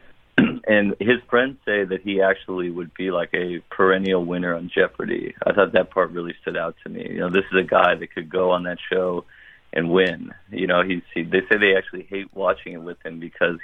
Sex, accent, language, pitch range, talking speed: male, American, English, 90-95 Hz, 230 wpm